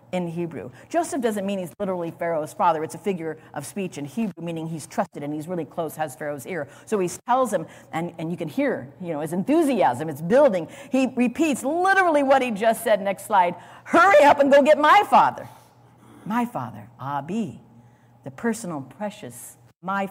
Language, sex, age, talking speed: English, female, 50-69, 190 wpm